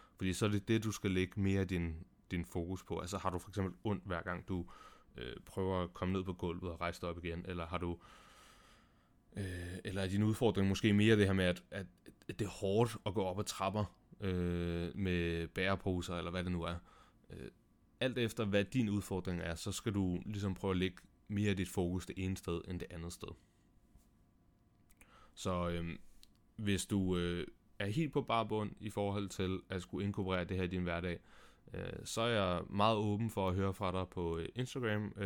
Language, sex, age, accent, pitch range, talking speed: Danish, male, 30-49, native, 90-100 Hz, 205 wpm